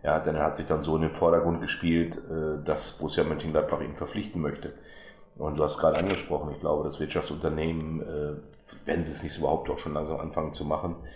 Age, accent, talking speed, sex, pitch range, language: 30-49, German, 215 wpm, male, 75-85 Hz, German